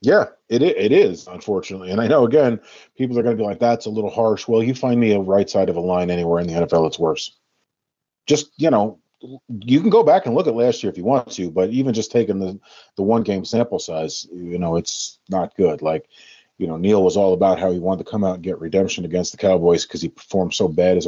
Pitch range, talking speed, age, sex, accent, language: 95-115 Hz, 260 wpm, 30-49, male, American, English